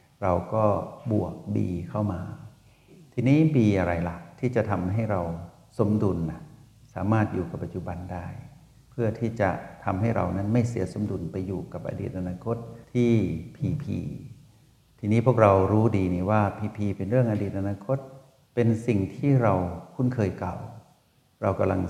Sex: male